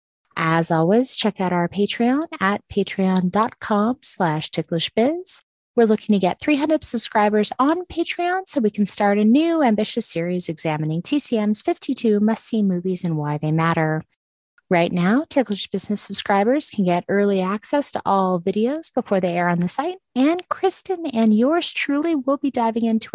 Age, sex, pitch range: 30-49, female, 180-260 Hz